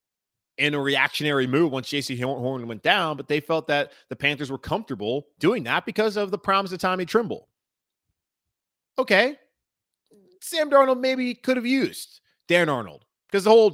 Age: 30-49